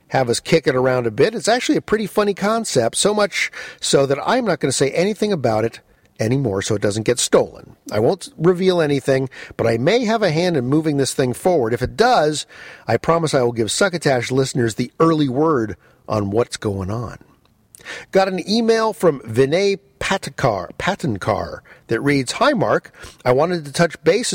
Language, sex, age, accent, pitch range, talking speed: English, male, 50-69, American, 130-200 Hz, 190 wpm